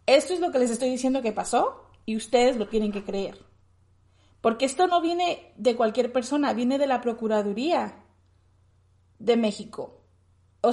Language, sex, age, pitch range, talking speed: Spanish, female, 30-49, 215-265 Hz, 160 wpm